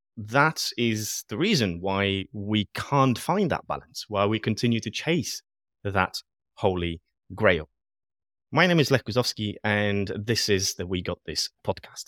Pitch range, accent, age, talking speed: 100-135 Hz, British, 30-49, 155 wpm